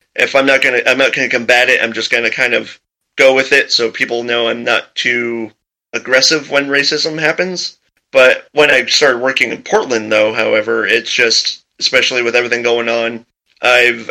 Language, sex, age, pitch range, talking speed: English, male, 30-49, 115-135 Hz, 185 wpm